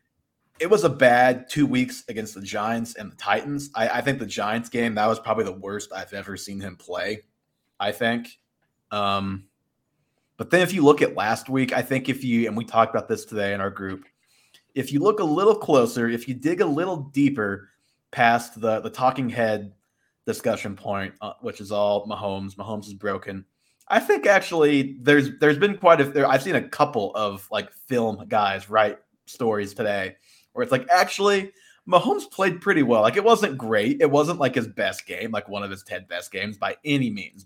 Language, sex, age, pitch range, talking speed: English, male, 20-39, 105-140 Hz, 205 wpm